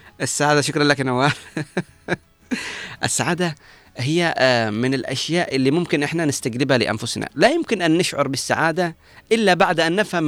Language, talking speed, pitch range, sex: Arabic, 130 wpm, 130-165 Hz, male